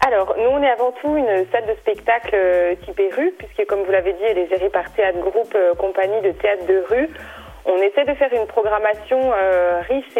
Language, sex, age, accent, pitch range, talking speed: French, female, 30-49, French, 185-230 Hz, 210 wpm